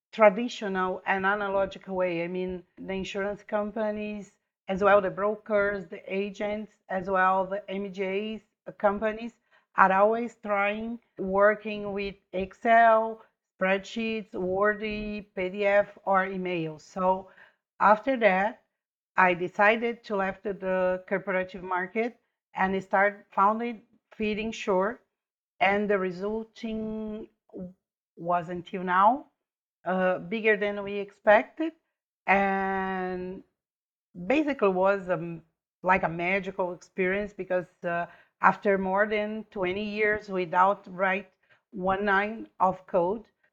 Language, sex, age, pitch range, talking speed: English, female, 40-59, 185-215 Hz, 110 wpm